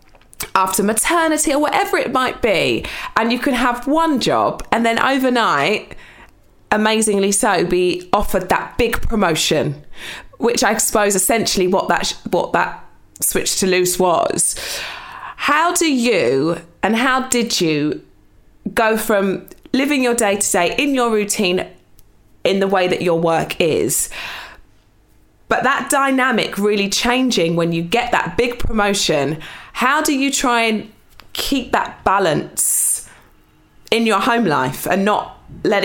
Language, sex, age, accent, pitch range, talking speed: English, female, 20-39, British, 185-250 Hz, 140 wpm